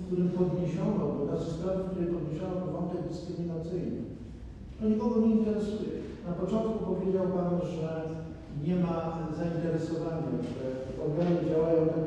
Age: 50-69